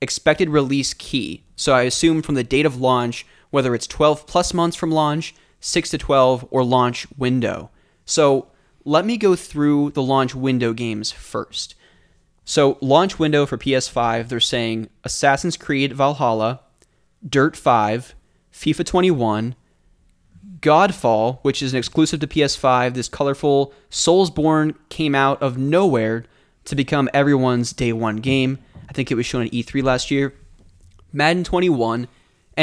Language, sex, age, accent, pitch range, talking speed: English, male, 20-39, American, 125-150 Hz, 145 wpm